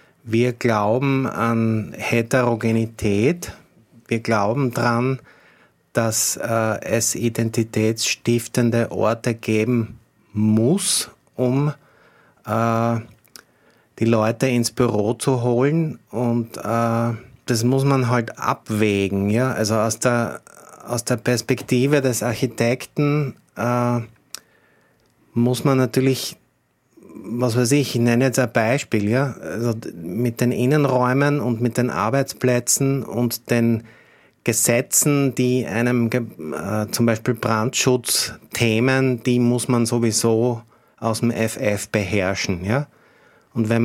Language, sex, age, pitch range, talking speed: German, male, 30-49, 115-125 Hz, 105 wpm